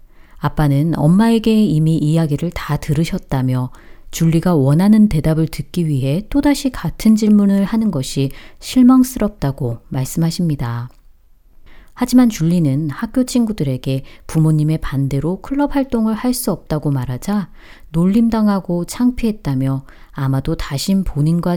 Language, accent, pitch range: Korean, native, 135-200 Hz